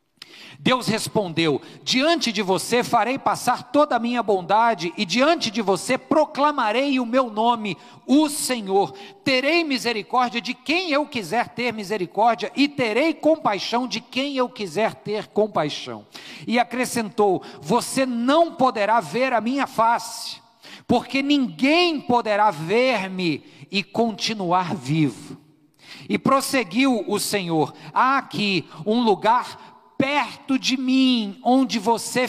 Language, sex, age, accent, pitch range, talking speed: Portuguese, male, 50-69, Brazilian, 175-245 Hz, 125 wpm